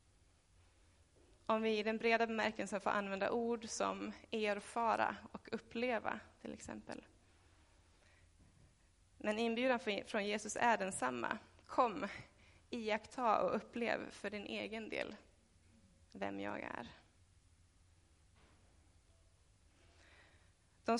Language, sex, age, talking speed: Swedish, female, 20-39, 95 wpm